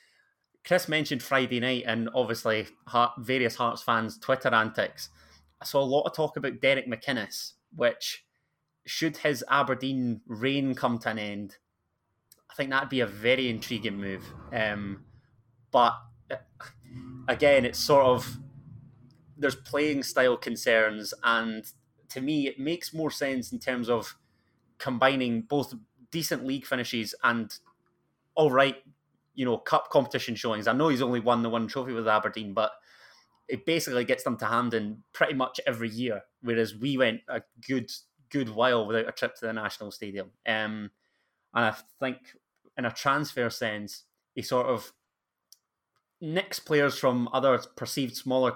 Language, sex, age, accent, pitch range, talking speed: English, male, 20-39, British, 115-135 Hz, 150 wpm